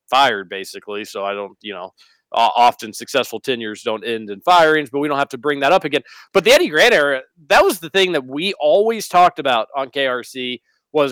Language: English